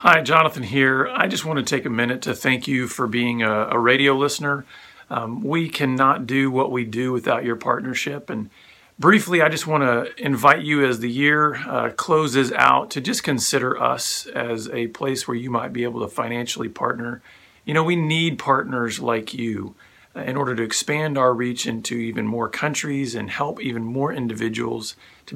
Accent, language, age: American, English, 40-59